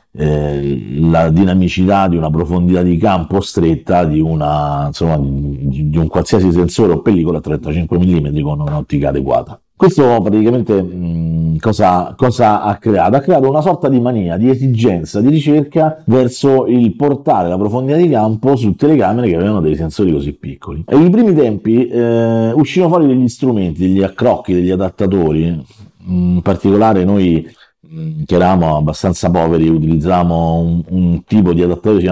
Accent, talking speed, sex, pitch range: native, 150 wpm, male, 85-115 Hz